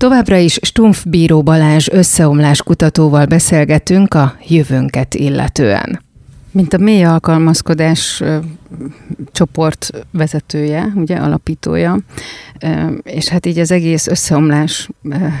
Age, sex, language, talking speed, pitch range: 30-49, female, Hungarian, 95 wpm, 155-180 Hz